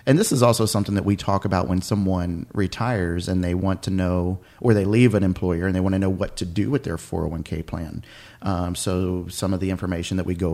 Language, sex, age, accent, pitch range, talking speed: English, male, 40-59, American, 90-110 Hz, 245 wpm